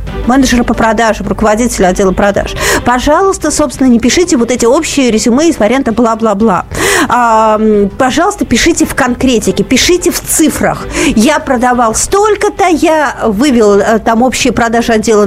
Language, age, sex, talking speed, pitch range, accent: Russian, 40-59, female, 130 wpm, 225-310 Hz, native